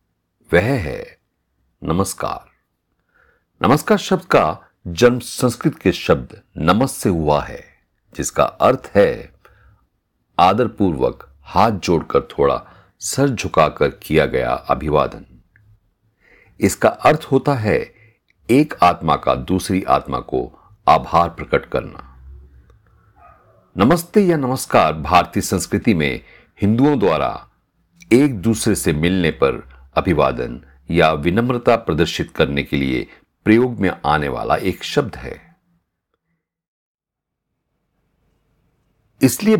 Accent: native